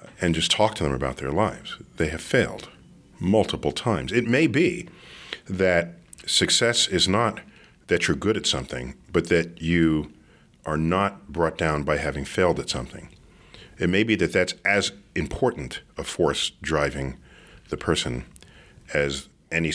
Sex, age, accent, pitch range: male, 40-59, American, 70-90 Hz